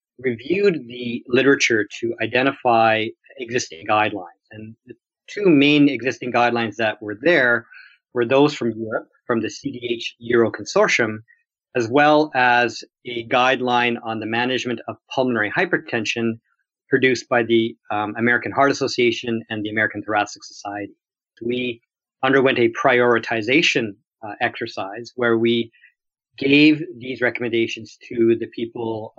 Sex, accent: male, American